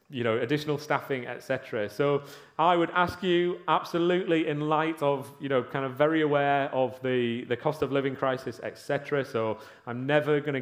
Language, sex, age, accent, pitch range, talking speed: English, male, 30-49, British, 120-150 Hz, 180 wpm